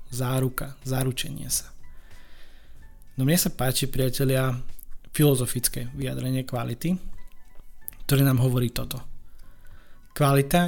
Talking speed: 90 wpm